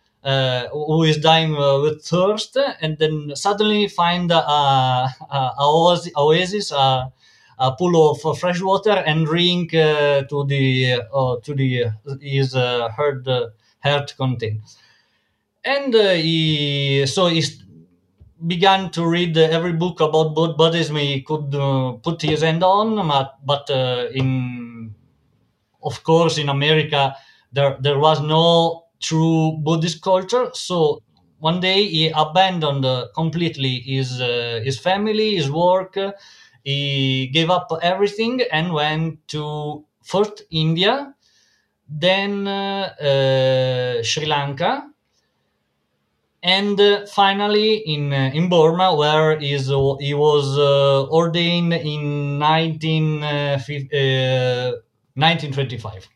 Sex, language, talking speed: male, English, 125 wpm